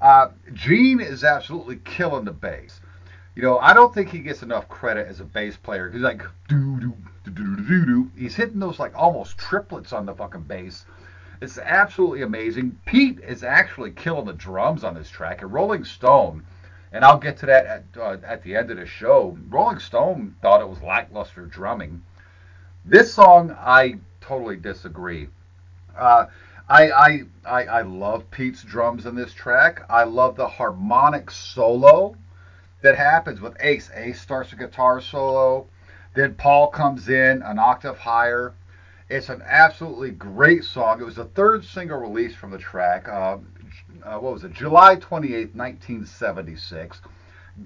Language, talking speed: English, 160 wpm